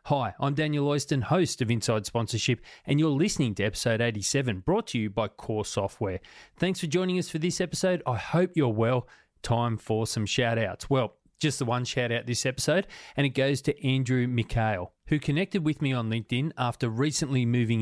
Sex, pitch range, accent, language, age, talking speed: male, 115-150 Hz, Australian, English, 30-49, 190 wpm